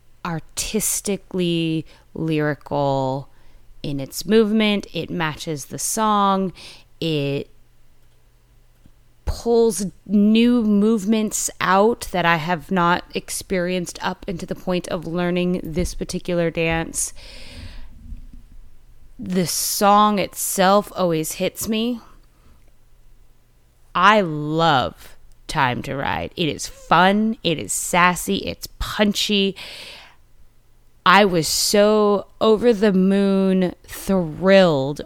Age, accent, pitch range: 20-39, American, 140-195 Hz